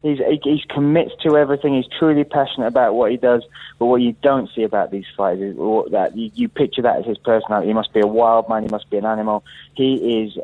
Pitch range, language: 105-115 Hz, English